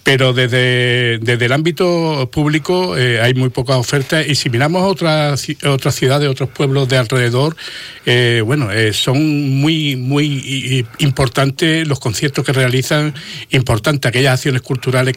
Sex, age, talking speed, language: male, 60-79, 140 wpm, Spanish